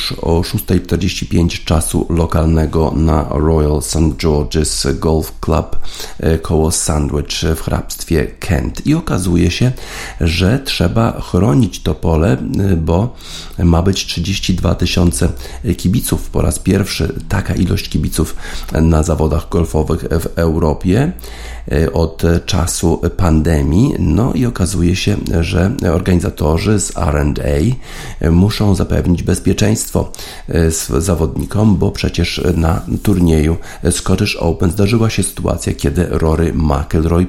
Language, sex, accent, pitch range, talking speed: Polish, male, native, 80-95 Hz, 110 wpm